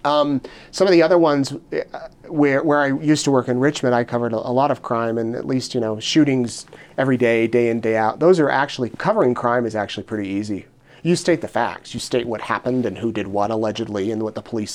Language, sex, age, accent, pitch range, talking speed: English, male, 30-49, American, 115-145 Hz, 245 wpm